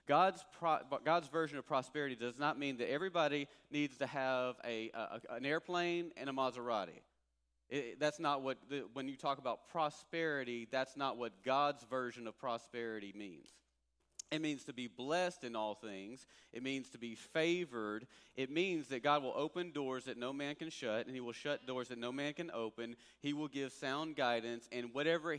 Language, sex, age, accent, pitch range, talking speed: English, male, 40-59, American, 120-160 Hz, 190 wpm